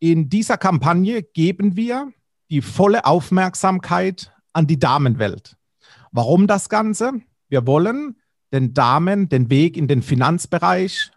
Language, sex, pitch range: German, male, 135-185 Hz